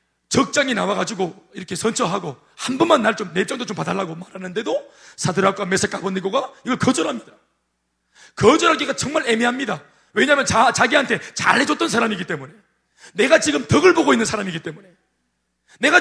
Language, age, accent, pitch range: Korean, 40-59, native, 195-265 Hz